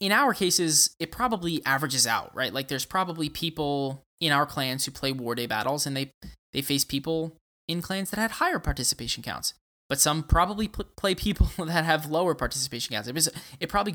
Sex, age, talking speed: male, 20-39, 200 wpm